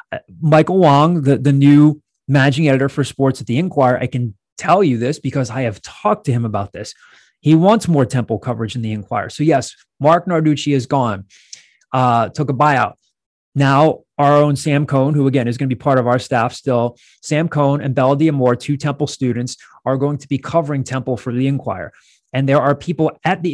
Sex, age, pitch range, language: male, 30-49, 125-150 Hz, English